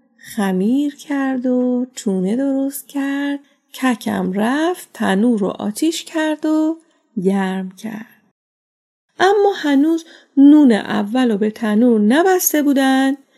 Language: Persian